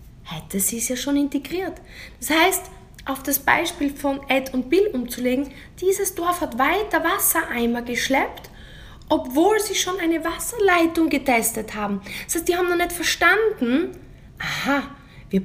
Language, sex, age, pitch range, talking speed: German, female, 20-39, 200-320 Hz, 150 wpm